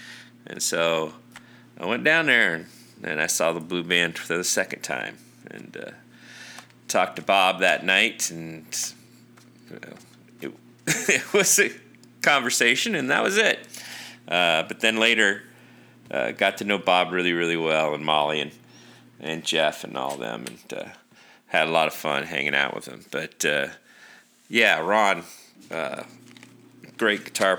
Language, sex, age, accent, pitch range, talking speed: English, male, 40-59, American, 85-110 Hz, 160 wpm